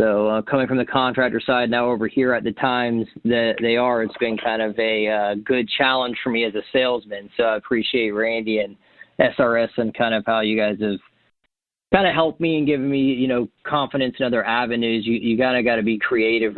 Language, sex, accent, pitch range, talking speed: English, male, American, 100-120 Hz, 225 wpm